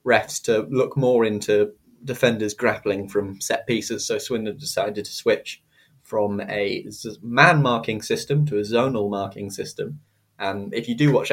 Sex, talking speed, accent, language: male, 160 wpm, British, English